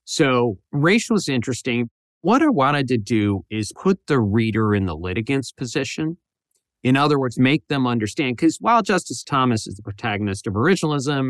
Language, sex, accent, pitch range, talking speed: English, male, American, 110-150 Hz, 170 wpm